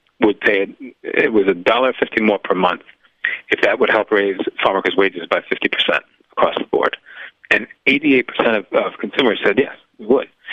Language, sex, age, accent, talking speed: English, male, 40-59, American, 200 wpm